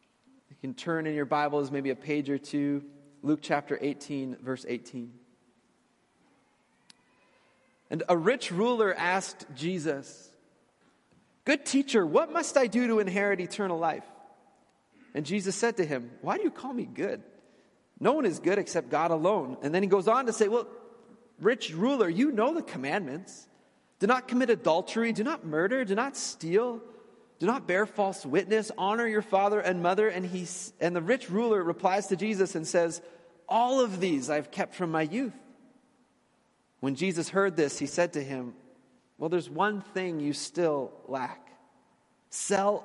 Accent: American